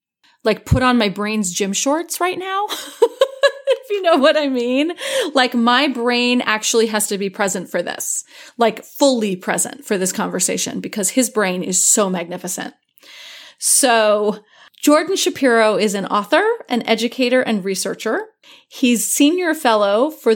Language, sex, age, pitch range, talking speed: English, female, 30-49, 210-280 Hz, 150 wpm